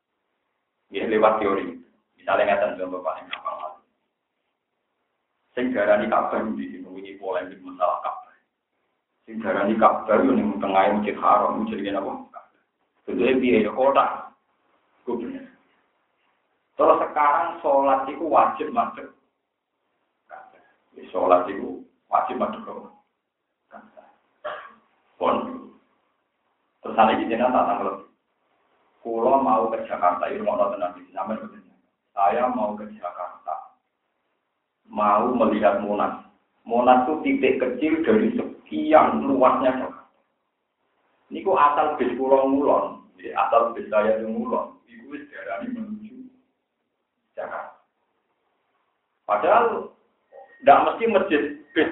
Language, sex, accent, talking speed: Indonesian, male, native, 95 wpm